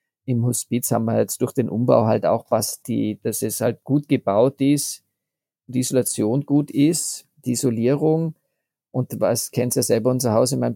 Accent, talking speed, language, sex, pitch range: German, 190 wpm, German, male, 110-135 Hz